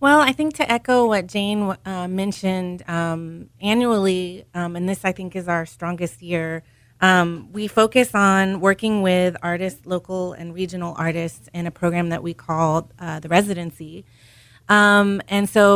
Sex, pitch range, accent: female, 170-195 Hz, American